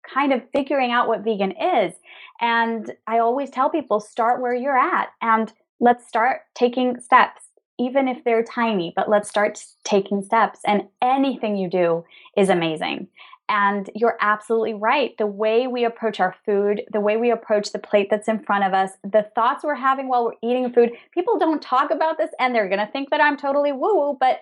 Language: English